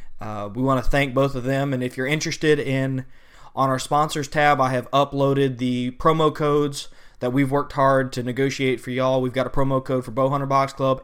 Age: 20-39